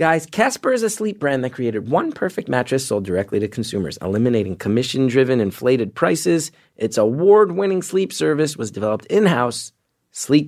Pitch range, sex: 115-160 Hz, male